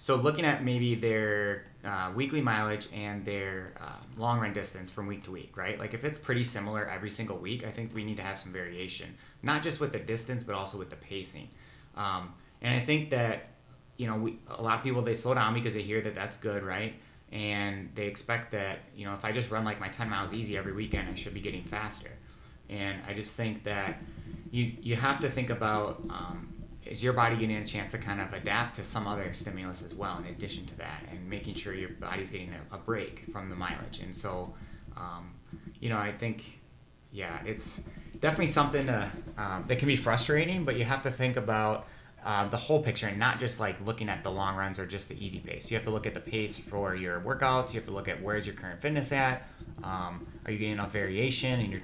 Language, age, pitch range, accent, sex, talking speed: English, 30-49, 100-120 Hz, American, male, 235 wpm